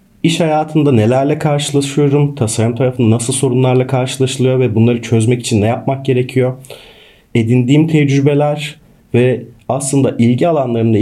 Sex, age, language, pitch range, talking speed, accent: male, 40-59, Turkish, 110-140 Hz, 120 wpm, native